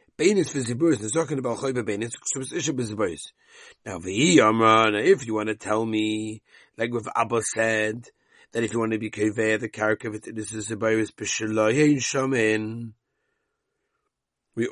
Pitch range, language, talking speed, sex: 110-155 Hz, English, 110 wpm, male